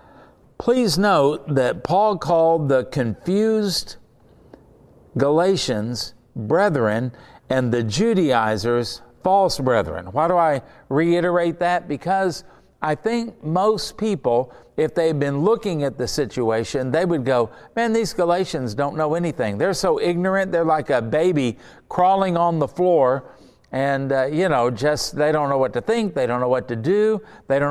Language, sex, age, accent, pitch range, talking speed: English, male, 60-79, American, 130-185 Hz, 150 wpm